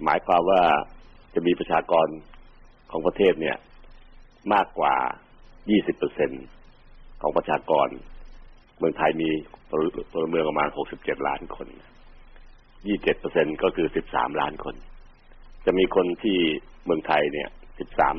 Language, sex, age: Thai, male, 60-79